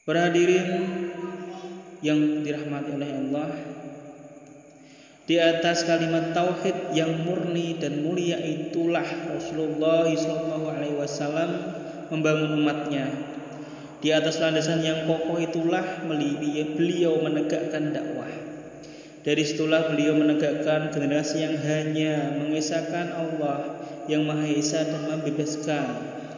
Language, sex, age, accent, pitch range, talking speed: Indonesian, male, 20-39, native, 145-160 Hz, 95 wpm